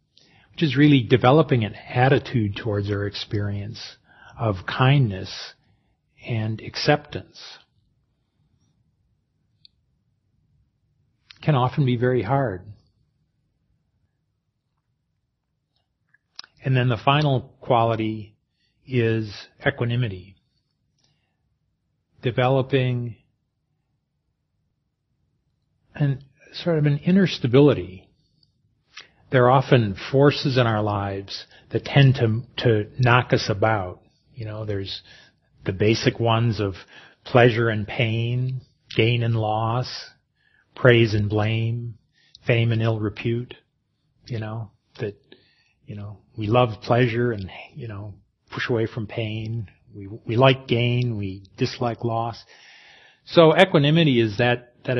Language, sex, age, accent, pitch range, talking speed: English, male, 40-59, American, 110-135 Hz, 100 wpm